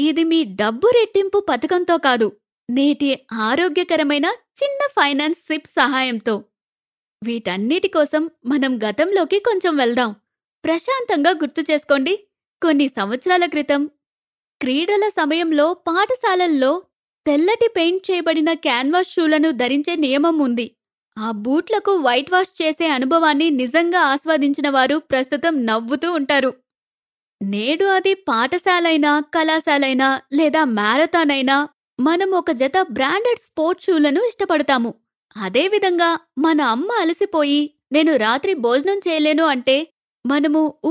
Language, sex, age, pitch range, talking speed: Telugu, female, 20-39, 270-350 Hz, 100 wpm